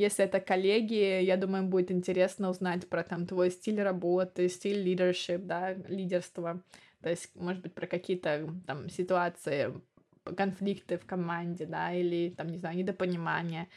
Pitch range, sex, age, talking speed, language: 180-200 Hz, female, 20-39, 150 wpm, Russian